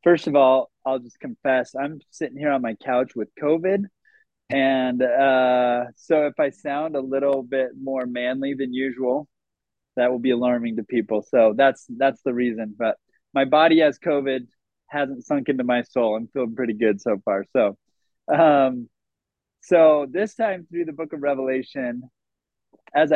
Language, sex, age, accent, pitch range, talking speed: English, male, 20-39, American, 130-175 Hz, 170 wpm